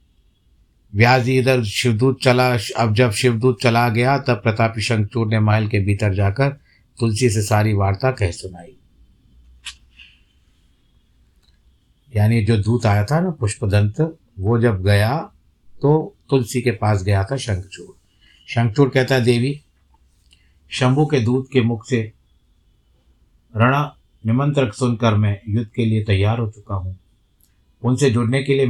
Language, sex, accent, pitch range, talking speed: Hindi, male, native, 100-120 Hz, 135 wpm